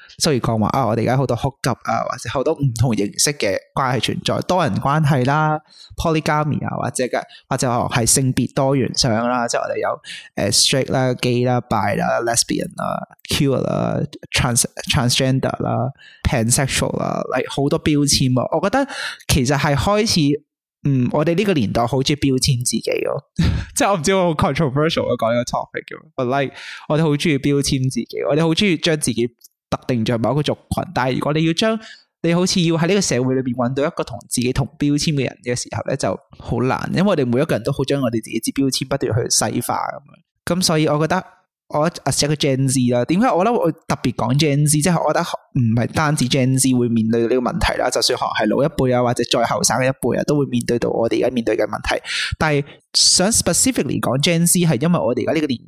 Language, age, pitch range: Chinese, 20-39, 125-160 Hz